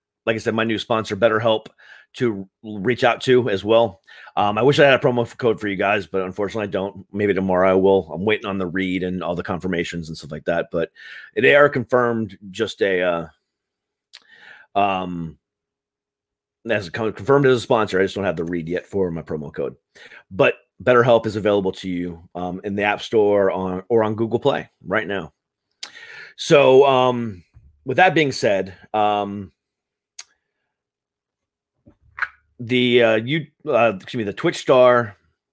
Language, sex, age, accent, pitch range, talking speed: English, male, 30-49, American, 95-125 Hz, 175 wpm